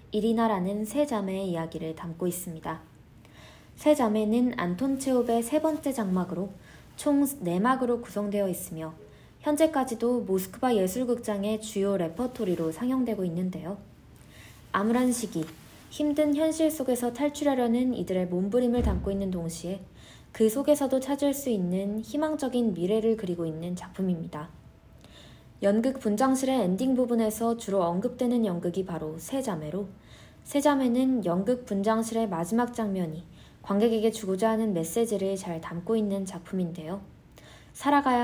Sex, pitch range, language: female, 185-250 Hz, Korean